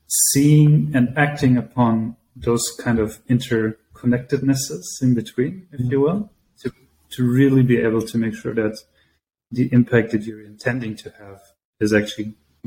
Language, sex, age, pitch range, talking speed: English, male, 30-49, 105-125 Hz, 145 wpm